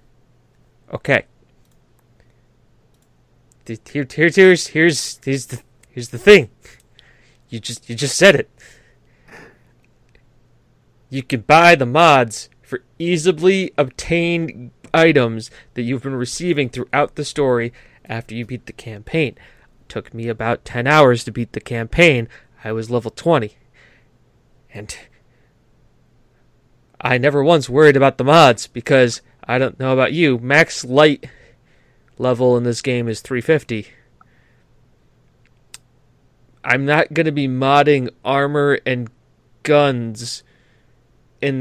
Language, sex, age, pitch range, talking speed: English, male, 20-39, 120-145 Hz, 120 wpm